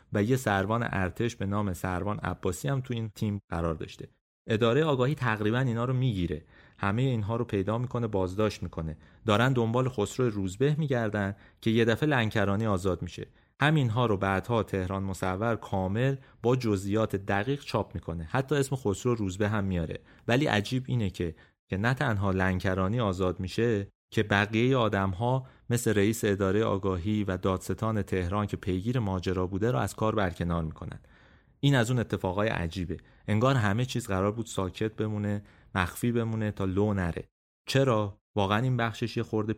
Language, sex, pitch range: Persian, male, 95-115 Hz